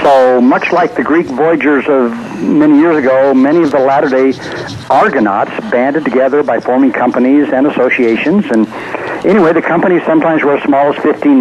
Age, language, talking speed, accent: 60-79, English, 170 wpm, American